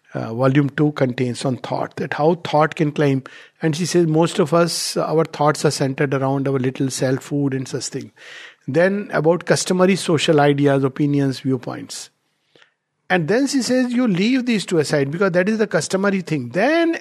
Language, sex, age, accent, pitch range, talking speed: English, male, 50-69, Indian, 150-200 Hz, 185 wpm